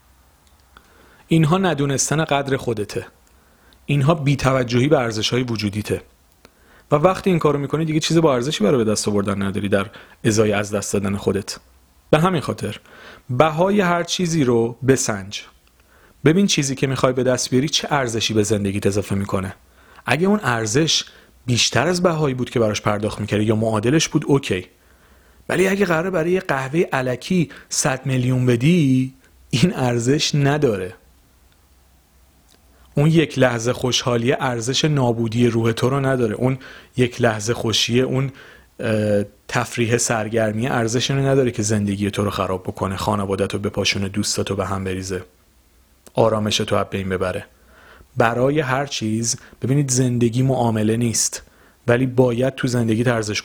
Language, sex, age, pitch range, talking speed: Persian, male, 40-59, 100-135 Hz, 145 wpm